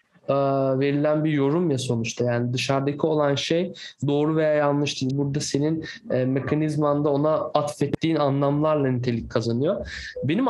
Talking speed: 125 wpm